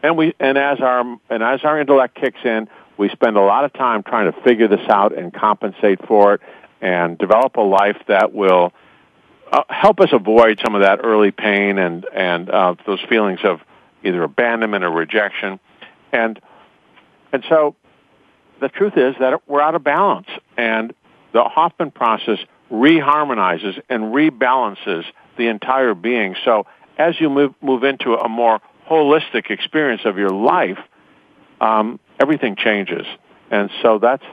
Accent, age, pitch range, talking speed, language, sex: American, 50-69, 105-135 Hz, 160 wpm, English, male